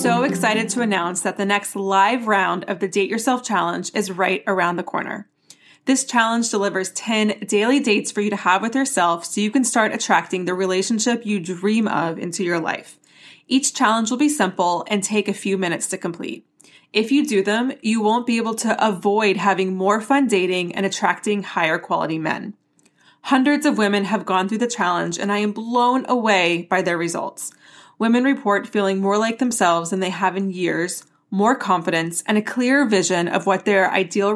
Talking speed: 195 wpm